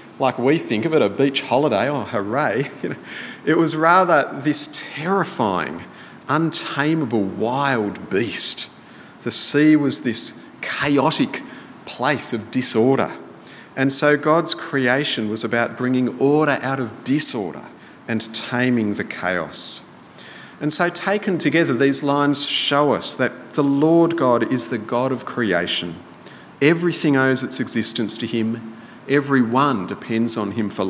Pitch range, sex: 115-155 Hz, male